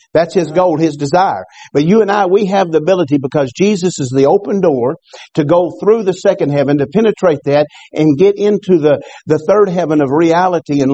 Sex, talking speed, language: male, 210 wpm, English